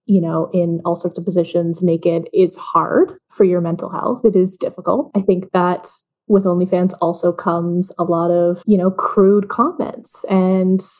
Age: 20-39